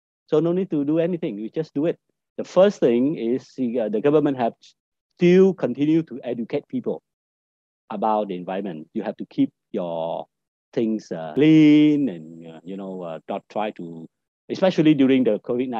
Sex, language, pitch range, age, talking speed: male, Vietnamese, 115-180 Hz, 50-69, 160 wpm